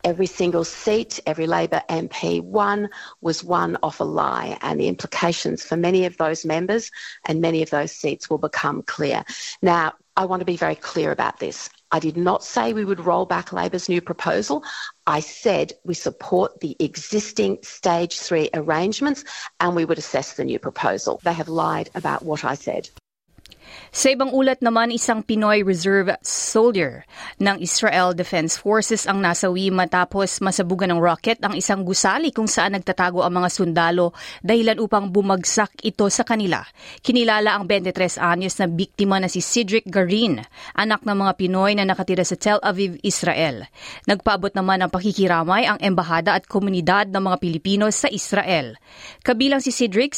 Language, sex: Filipino, female